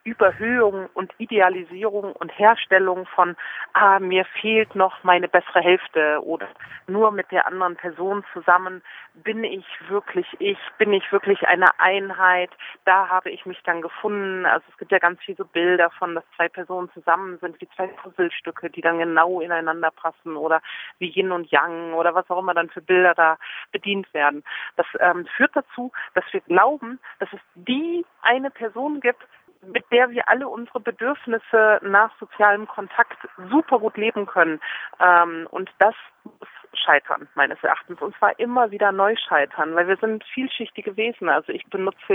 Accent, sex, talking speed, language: German, female, 170 wpm, German